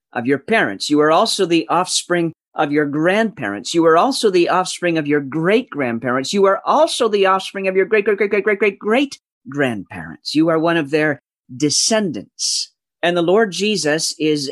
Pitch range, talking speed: 145-195 Hz, 185 wpm